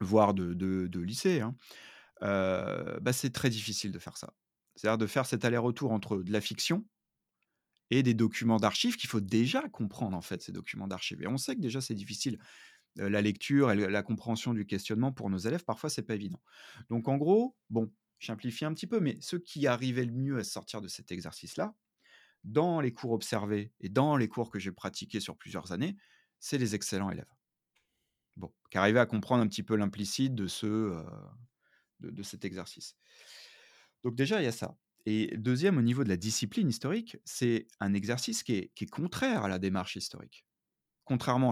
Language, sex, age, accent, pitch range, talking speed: French, male, 30-49, French, 105-135 Hz, 200 wpm